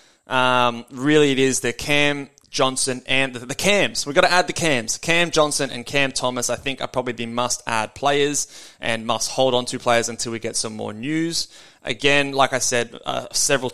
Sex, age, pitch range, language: male, 20-39, 115-135 Hz, English